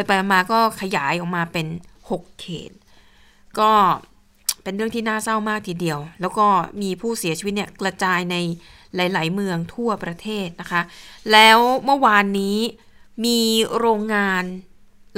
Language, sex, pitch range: Thai, female, 180-220 Hz